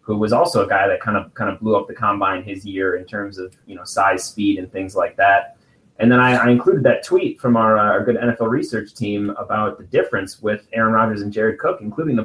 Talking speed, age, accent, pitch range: 260 wpm, 30-49, American, 100-120 Hz